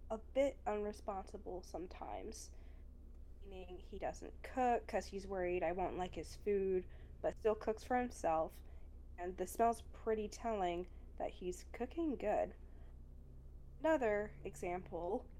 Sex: female